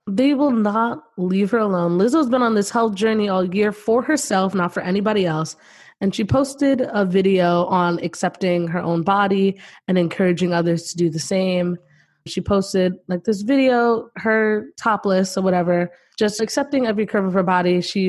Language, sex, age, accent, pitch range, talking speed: English, female, 20-39, American, 175-205 Hz, 180 wpm